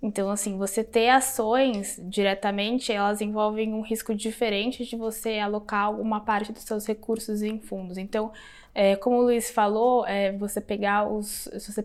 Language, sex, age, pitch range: English, female, 20-39, 205-240 Hz